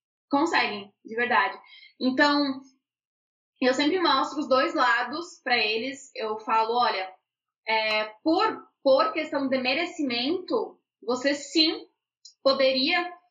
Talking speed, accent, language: 110 wpm, Brazilian, Portuguese